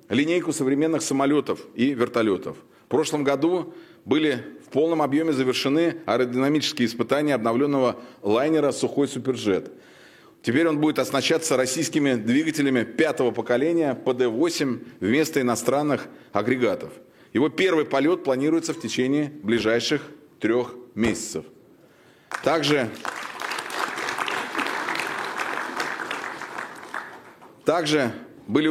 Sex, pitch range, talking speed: male, 125-155 Hz, 90 wpm